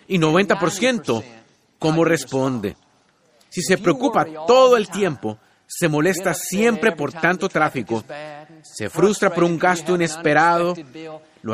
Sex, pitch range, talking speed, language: male, 150-200 Hz, 120 wpm, Spanish